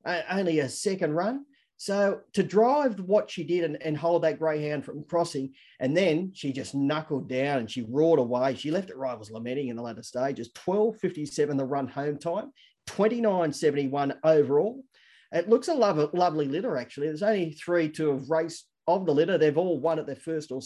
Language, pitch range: English, 140-175 Hz